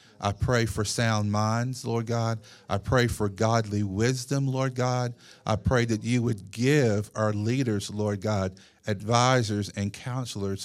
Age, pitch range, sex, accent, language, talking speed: 50-69, 105-125 Hz, male, American, English, 150 wpm